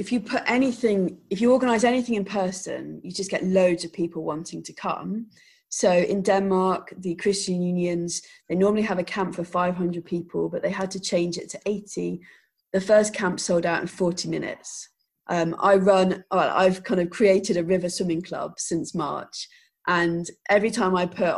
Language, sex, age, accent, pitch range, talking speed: English, female, 20-39, British, 175-215 Hz, 190 wpm